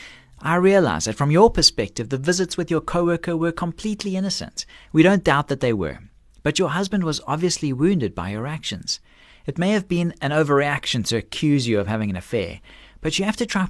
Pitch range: 120-175 Hz